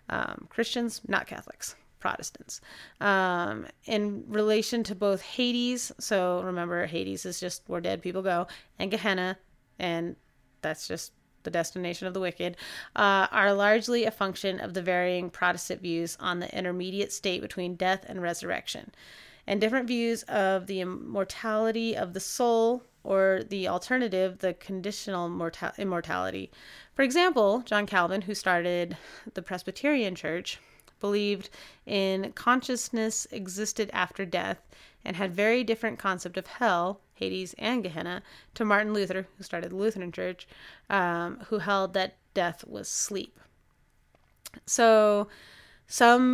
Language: English